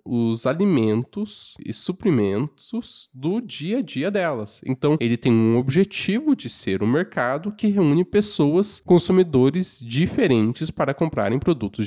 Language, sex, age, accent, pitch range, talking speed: Portuguese, male, 10-29, Brazilian, 125-200 Hz, 130 wpm